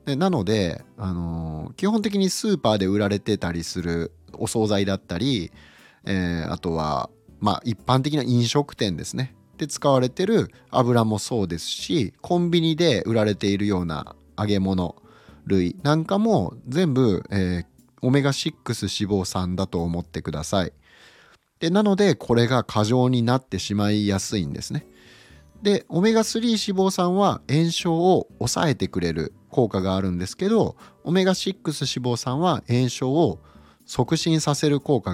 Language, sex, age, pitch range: Japanese, male, 30-49, 95-145 Hz